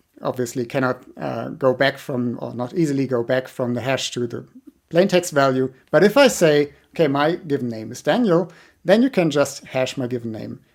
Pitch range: 125-170 Hz